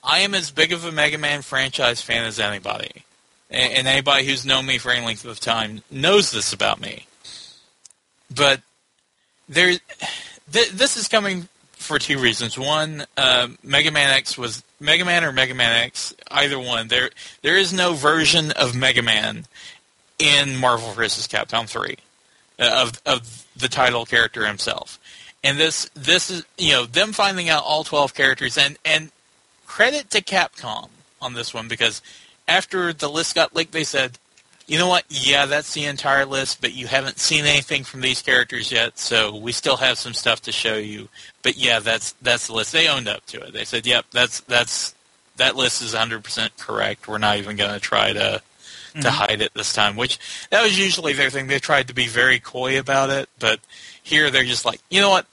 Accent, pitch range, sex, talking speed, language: American, 120-150 Hz, male, 195 wpm, English